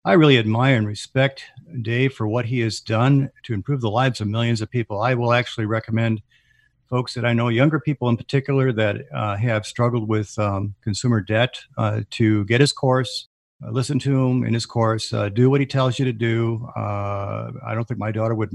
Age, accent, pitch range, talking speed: 50-69, American, 110-125 Hz, 210 wpm